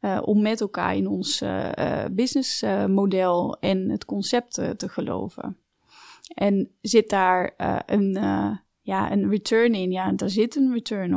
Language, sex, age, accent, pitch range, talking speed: Dutch, female, 30-49, Dutch, 185-225 Hz, 150 wpm